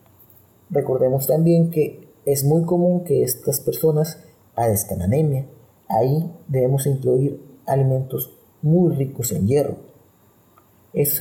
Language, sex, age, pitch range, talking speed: Spanish, male, 40-59, 115-155 Hz, 110 wpm